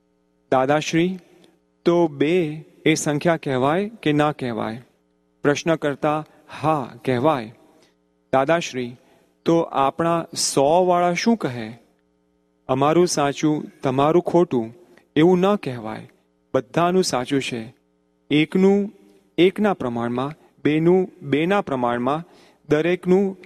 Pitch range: 125-165 Hz